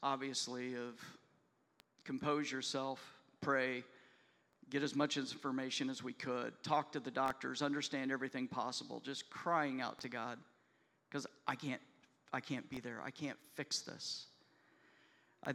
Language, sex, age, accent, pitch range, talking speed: English, male, 50-69, American, 130-150 Hz, 140 wpm